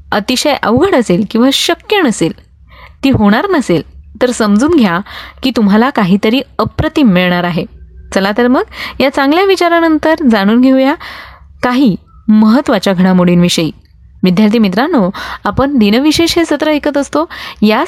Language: Marathi